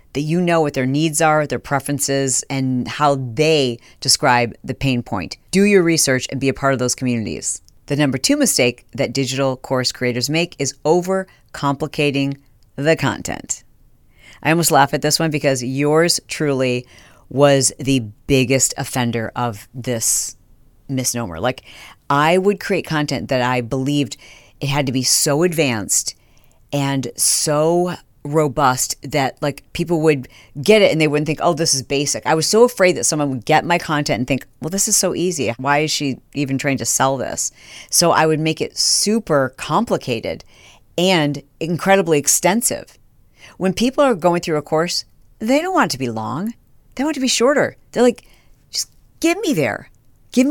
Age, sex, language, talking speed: 40-59, female, English, 175 wpm